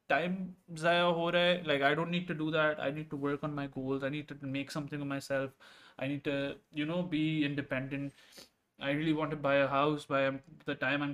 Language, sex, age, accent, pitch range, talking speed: English, male, 20-39, Indian, 130-160 Hz, 220 wpm